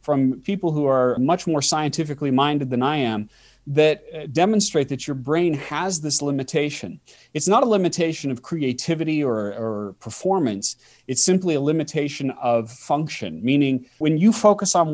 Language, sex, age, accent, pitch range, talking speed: English, male, 30-49, American, 125-160 Hz, 155 wpm